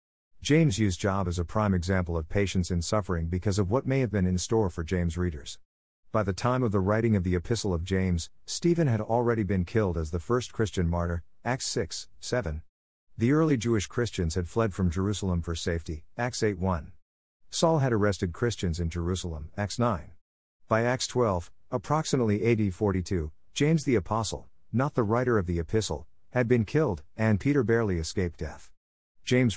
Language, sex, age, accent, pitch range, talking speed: English, male, 50-69, American, 90-115 Hz, 185 wpm